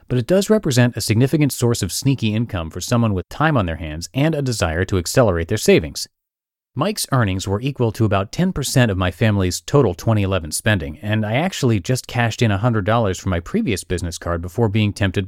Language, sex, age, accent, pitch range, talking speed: English, male, 30-49, American, 95-130 Hz, 205 wpm